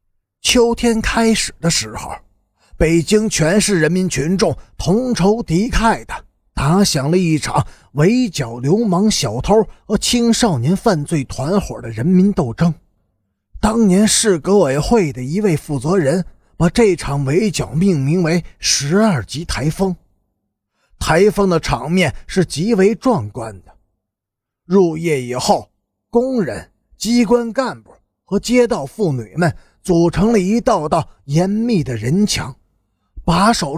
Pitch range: 140-215 Hz